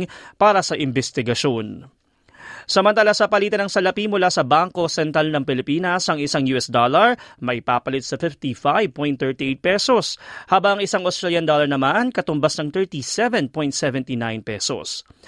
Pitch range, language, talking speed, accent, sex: 135-185 Hz, Filipino, 125 wpm, native, male